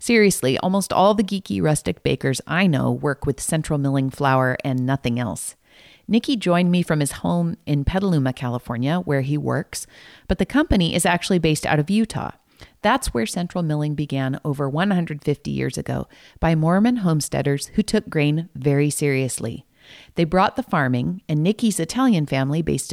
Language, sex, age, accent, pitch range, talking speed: English, female, 40-59, American, 140-185 Hz, 165 wpm